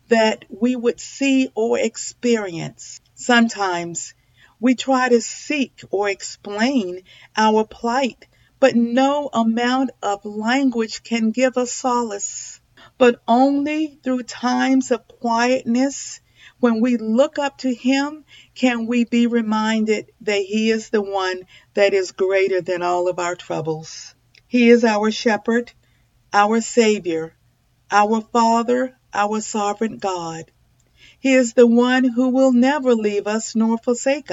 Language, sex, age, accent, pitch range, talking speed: English, female, 50-69, American, 205-250 Hz, 130 wpm